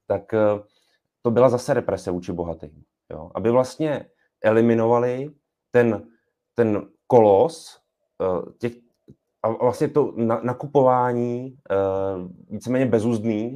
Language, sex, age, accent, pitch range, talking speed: Czech, male, 30-49, native, 100-130 Hz, 100 wpm